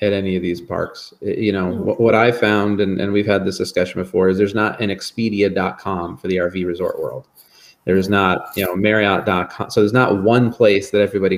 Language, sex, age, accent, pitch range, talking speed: English, male, 30-49, American, 95-105 Hz, 205 wpm